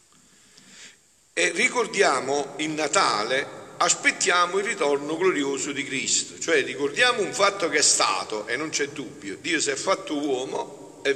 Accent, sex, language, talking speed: native, male, Italian, 145 wpm